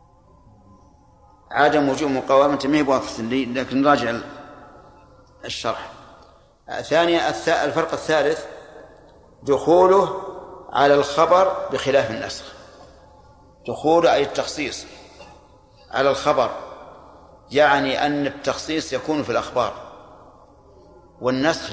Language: Arabic